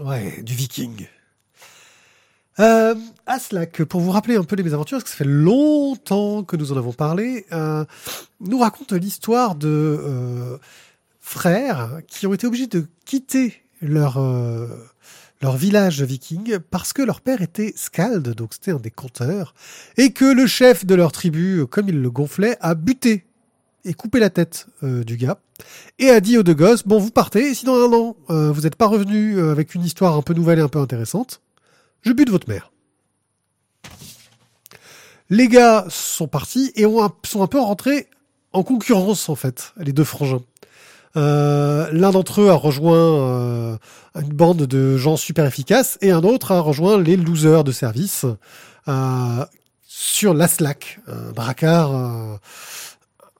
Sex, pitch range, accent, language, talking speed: male, 140-205 Hz, French, French, 170 wpm